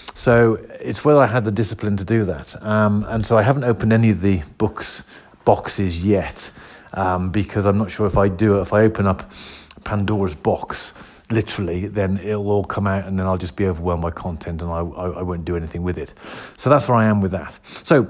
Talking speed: 220 wpm